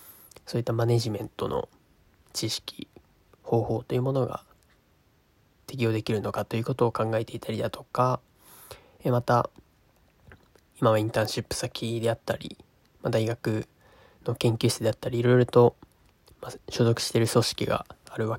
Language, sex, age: Japanese, male, 20-39